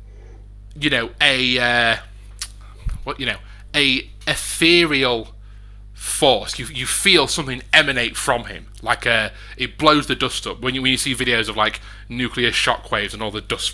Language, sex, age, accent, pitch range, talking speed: English, male, 30-49, British, 100-130 Hz, 170 wpm